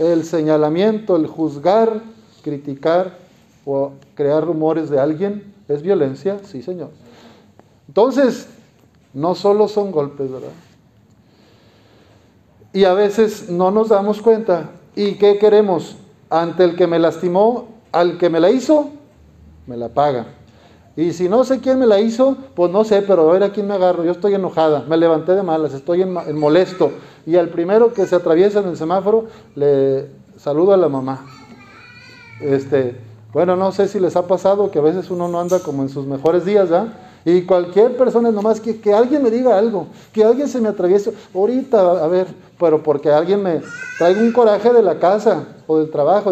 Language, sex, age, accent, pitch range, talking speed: Spanish, male, 50-69, Mexican, 150-205 Hz, 180 wpm